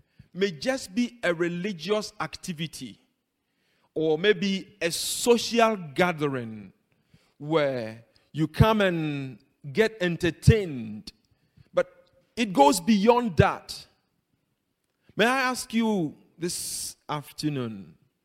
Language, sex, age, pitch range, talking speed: English, male, 40-59, 150-205 Hz, 90 wpm